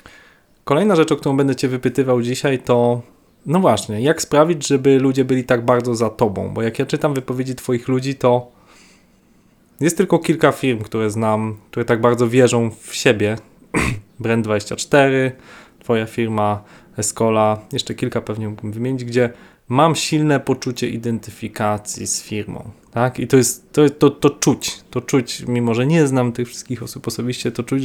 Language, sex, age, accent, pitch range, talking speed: Polish, male, 20-39, native, 115-135 Hz, 165 wpm